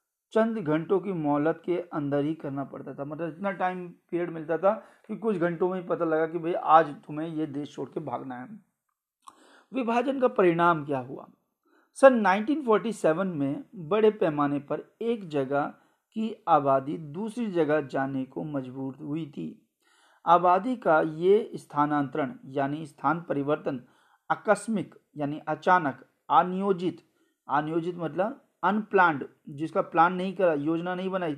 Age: 40-59